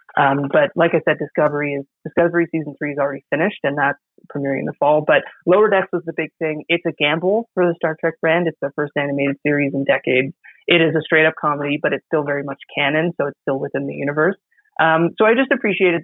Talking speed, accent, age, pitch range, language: 240 wpm, American, 30-49, 145-170 Hz, English